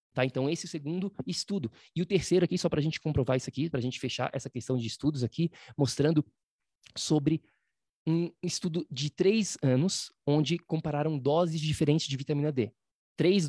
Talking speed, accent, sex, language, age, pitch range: 185 wpm, Brazilian, male, Portuguese, 20-39, 130-165 Hz